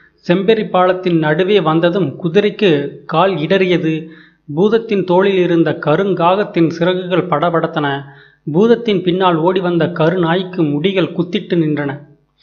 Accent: native